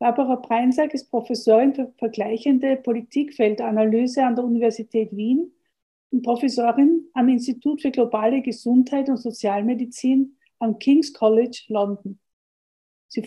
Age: 50-69